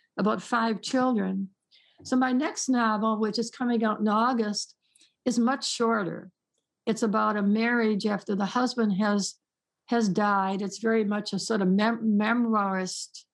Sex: female